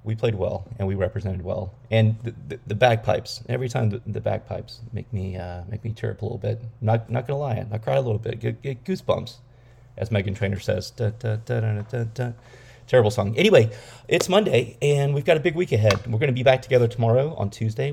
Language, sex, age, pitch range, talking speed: English, male, 30-49, 110-125 Hz, 240 wpm